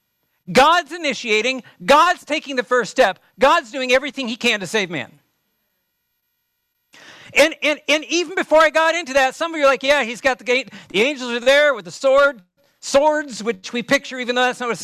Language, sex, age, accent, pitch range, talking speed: English, male, 50-69, American, 215-290 Hz, 200 wpm